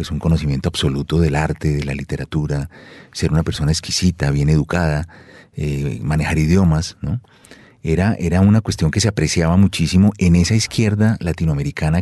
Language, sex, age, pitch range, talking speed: Spanish, male, 40-59, 80-95 Hz, 150 wpm